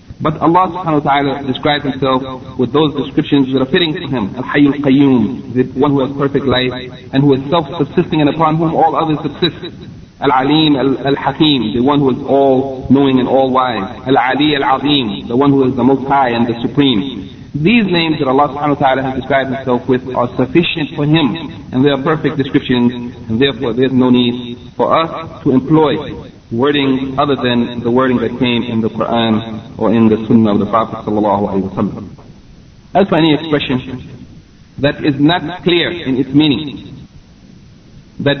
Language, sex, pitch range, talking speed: English, male, 125-145 Hz, 180 wpm